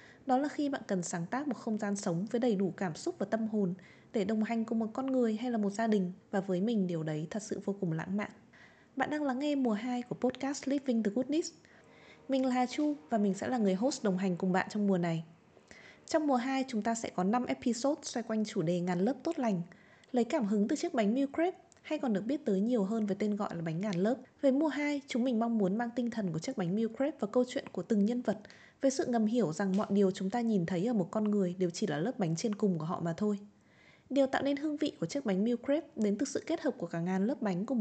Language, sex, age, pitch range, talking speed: Vietnamese, female, 20-39, 195-260 Hz, 280 wpm